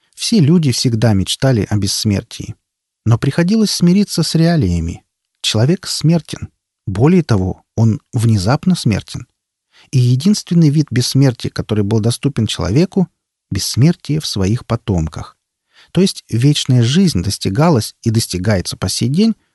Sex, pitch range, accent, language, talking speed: male, 105-160 Hz, native, Russian, 125 wpm